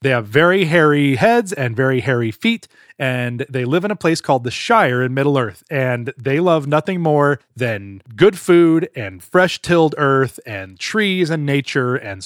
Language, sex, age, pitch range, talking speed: English, male, 30-49, 125-160 Hz, 175 wpm